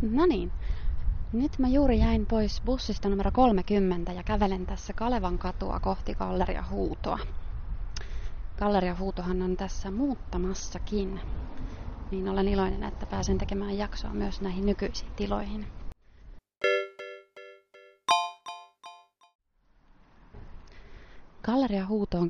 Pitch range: 170-210 Hz